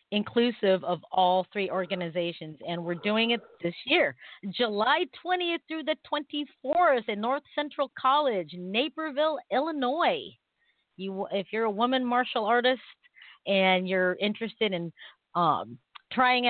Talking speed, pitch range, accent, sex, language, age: 125 wpm, 190-250 Hz, American, female, English, 40-59